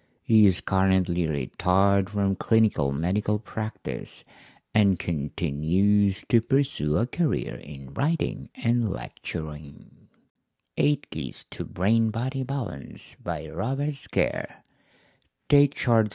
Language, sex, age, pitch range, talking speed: English, male, 50-69, 90-120 Hz, 105 wpm